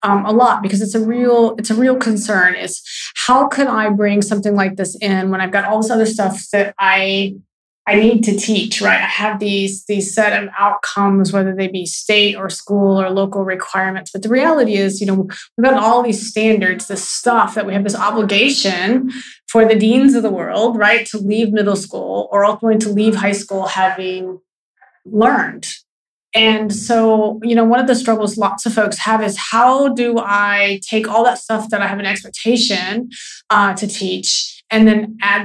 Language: English